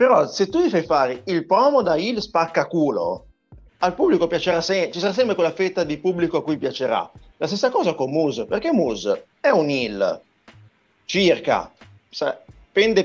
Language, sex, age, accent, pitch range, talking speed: Italian, male, 30-49, native, 140-190 Hz, 180 wpm